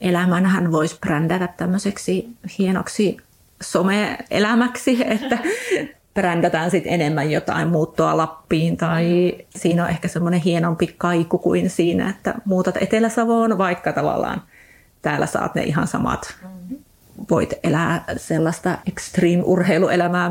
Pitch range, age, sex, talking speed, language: 170-205 Hz, 30-49, female, 105 wpm, Finnish